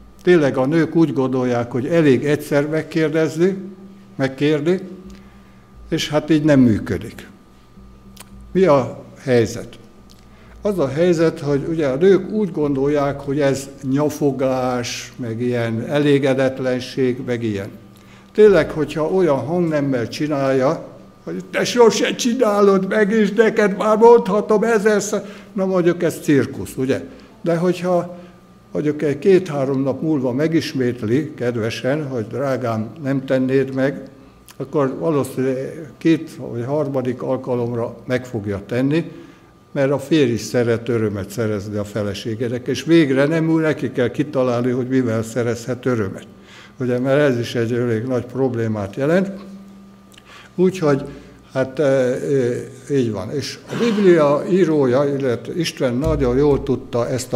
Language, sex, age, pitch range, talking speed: Hungarian, male, 60-79, 125-165 Hz, 130 wpm